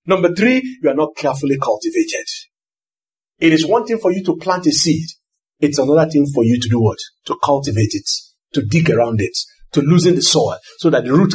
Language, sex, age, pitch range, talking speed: English, male, 50-69, 140-225 Hz, 210 wpm